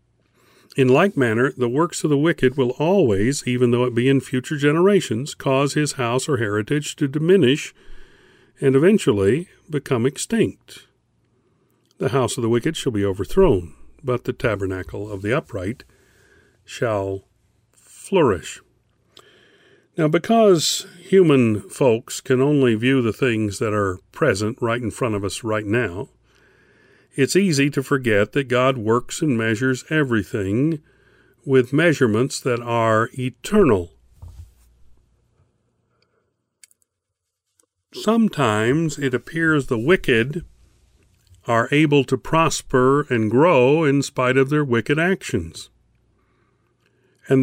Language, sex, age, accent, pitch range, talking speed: English, male, 50-69, American, 110-150 Hz, 120 wpm